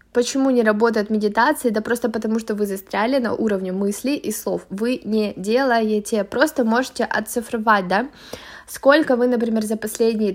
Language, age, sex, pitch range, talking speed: Russian, 20-39, female, 210-265 Hz, 155 wpm